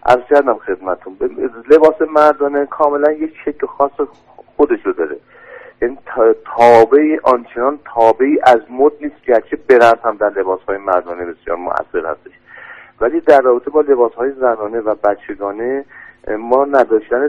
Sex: male